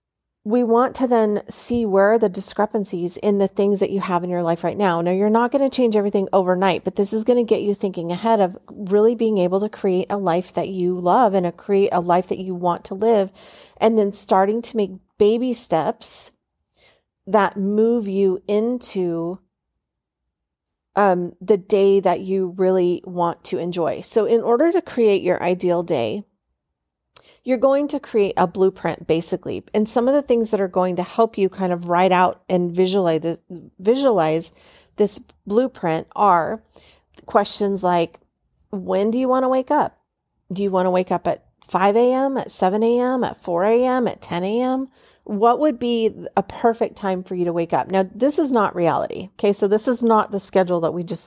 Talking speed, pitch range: 190 wpm, 180-230 Hz